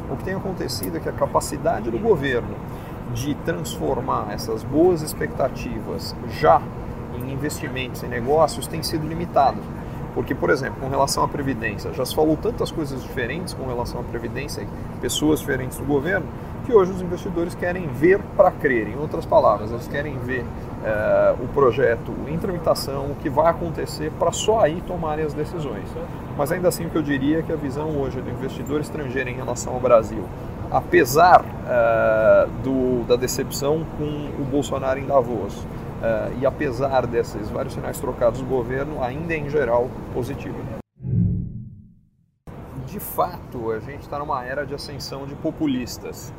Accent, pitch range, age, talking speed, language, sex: Brazilian, 125-160 Hz, 40-59, 165 wpm, Portuguese, male